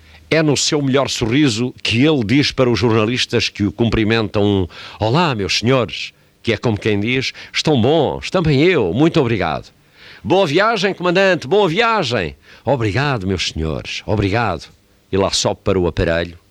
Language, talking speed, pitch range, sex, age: Portuguese, 155 wpm, 90-110 Hz, male, 50-69